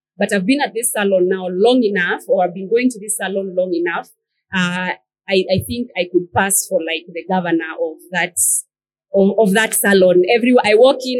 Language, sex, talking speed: English, female, 195 wpm